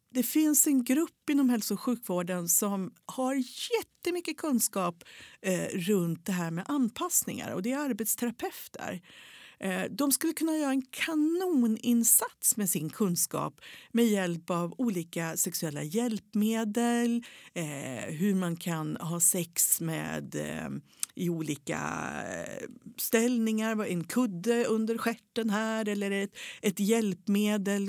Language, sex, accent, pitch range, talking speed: Swedish, female, native, 175-245 Hz, 115 wpm